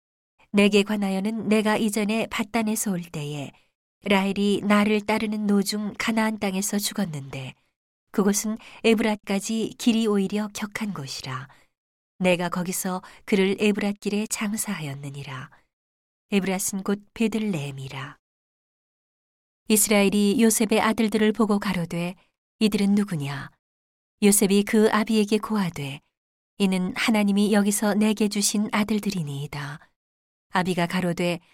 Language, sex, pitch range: Korean, female, 175-215 Hz